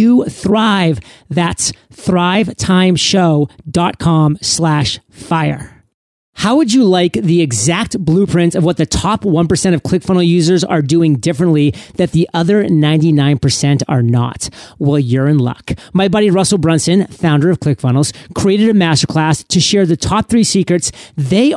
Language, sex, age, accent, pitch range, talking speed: English, male, 40-59, American, 150-185 Hz, 140 wpm